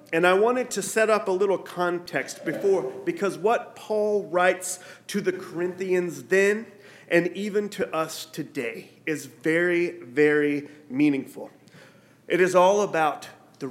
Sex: male